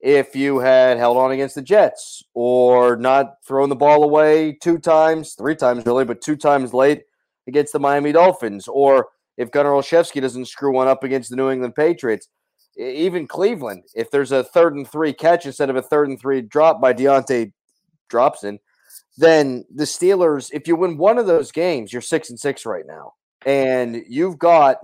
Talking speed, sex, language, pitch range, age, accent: 190 wpm, male, English, 130-165 Hz, 30-49, American